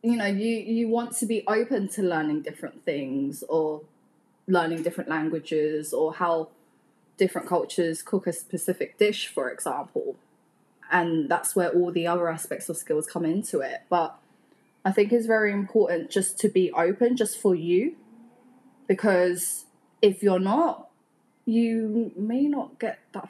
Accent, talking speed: British, 155 wpm